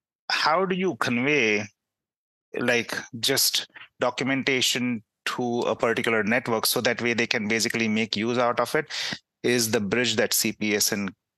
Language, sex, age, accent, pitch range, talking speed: English, male, 30-49, Indian, 105-130 Hz, 140 wpm